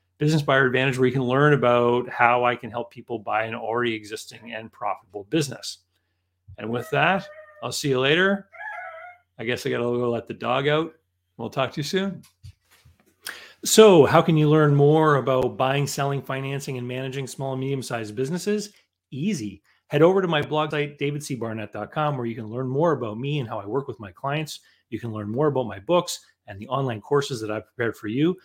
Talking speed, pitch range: 205 wpm, 120-150 Hz